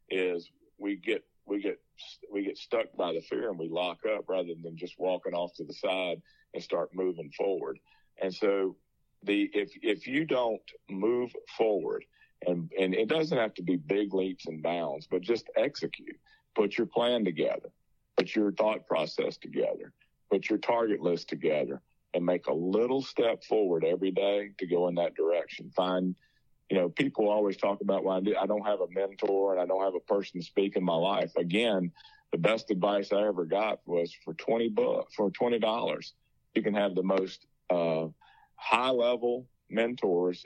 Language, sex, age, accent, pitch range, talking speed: English, male, 50-69, American, 90-125 Hz, 185 wpm